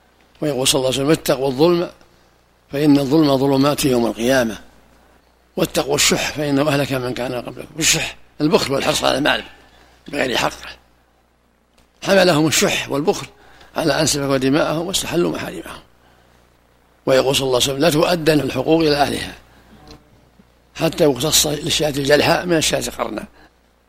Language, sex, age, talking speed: Arabic, male, 60-79, 115 wpm